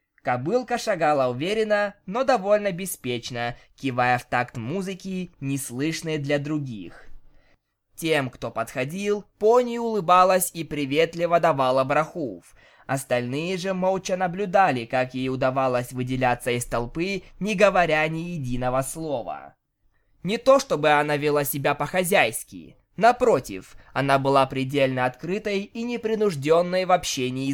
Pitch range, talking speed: 130-185 Hz, 115 wpm